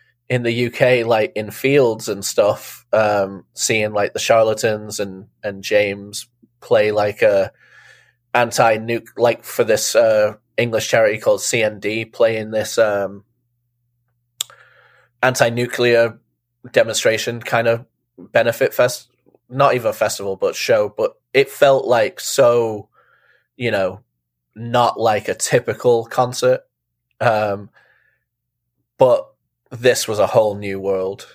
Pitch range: 105-125 Hz